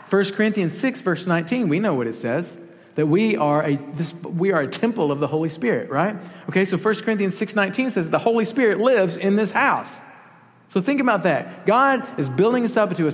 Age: 40-59